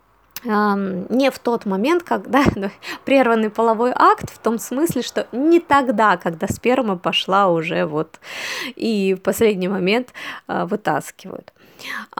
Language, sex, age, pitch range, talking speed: Russian, female, 20-39, 185-260 Hz, 135 wpm